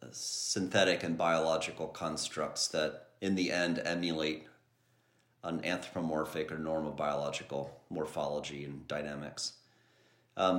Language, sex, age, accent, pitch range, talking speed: English, male, 40-59, American, 75-85 Hz, 100 wpm